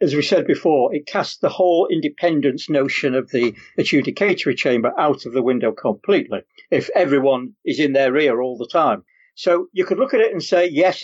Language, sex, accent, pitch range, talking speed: English, male, British, 140-190 Hz, 200 wpm